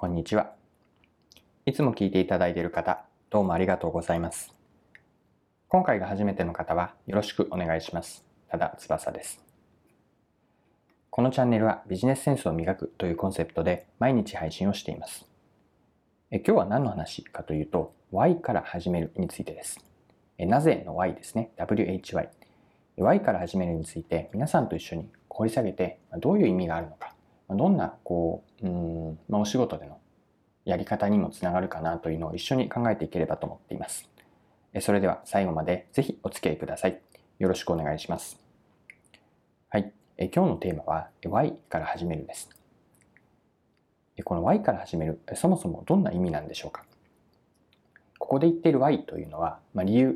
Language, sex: Japanese, male